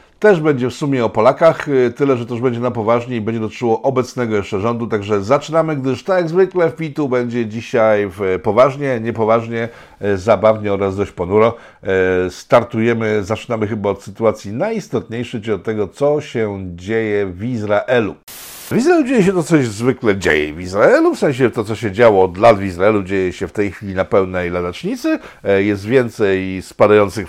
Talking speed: 180 wpm